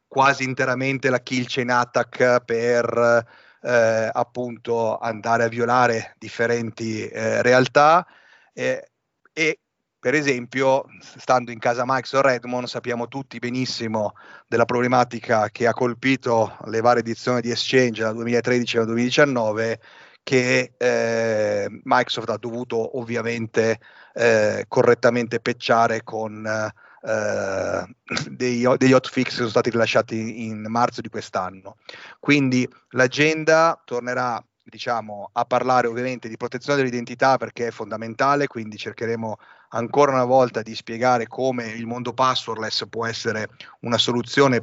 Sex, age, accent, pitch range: male, 40-59, native, 115-125 Hz